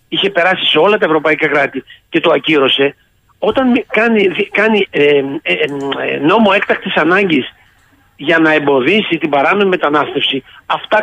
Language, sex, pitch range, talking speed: Greek, male, 160-245 Hz, 135 wpm